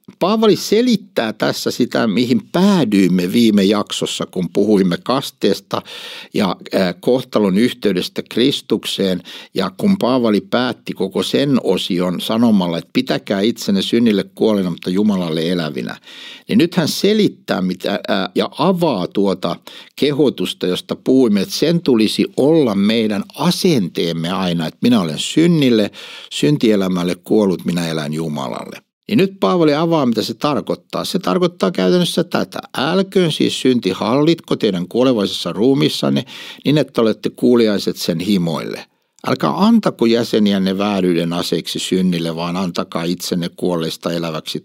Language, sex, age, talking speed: Finnish, male, 60-79, 120 wpm